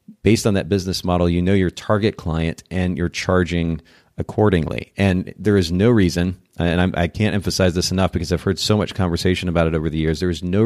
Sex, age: male, 30-49